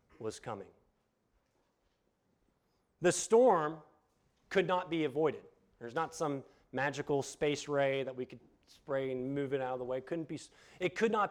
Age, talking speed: 40-59, 165 wpm